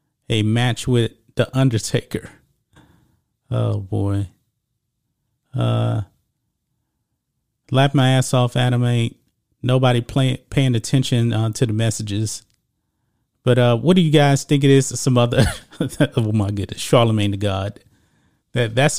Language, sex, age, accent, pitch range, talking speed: English, male, 30-49, American, 115-145 Hz, 130 wpm